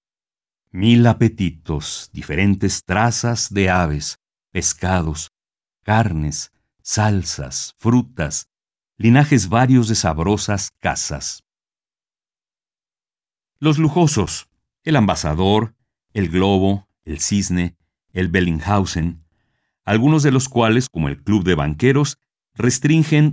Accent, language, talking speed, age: Mexican, Spanish, 90 wpm, 50-69